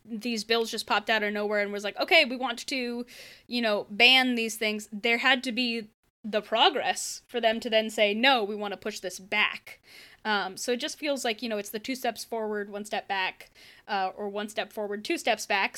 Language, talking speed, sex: English, 230 wpm, female